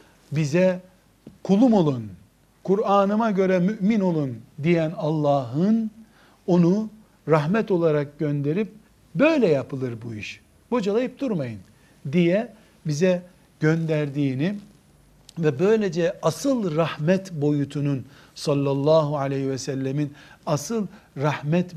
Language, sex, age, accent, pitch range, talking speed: Turkish, male, 60-79, native, 145-190 Hz, 90 wpm